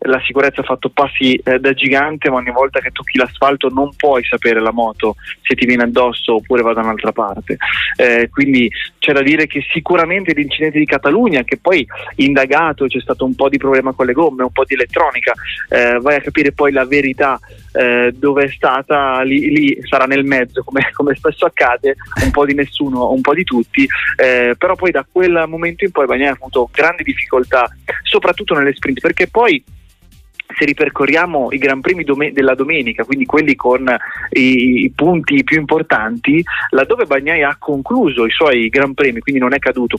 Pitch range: 125-150 Hz